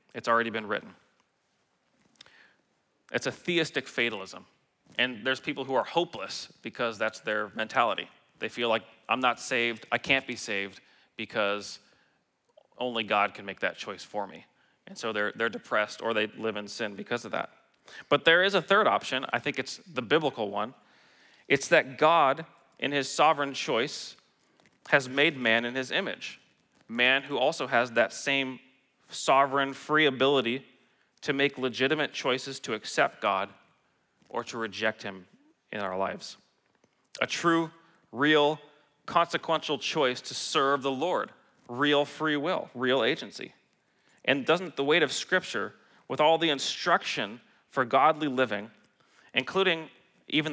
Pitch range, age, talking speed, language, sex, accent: 120-150 Hz, 30-49, 150 wpm, English, male, American